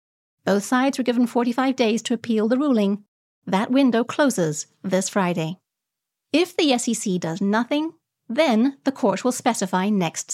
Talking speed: 150 wpm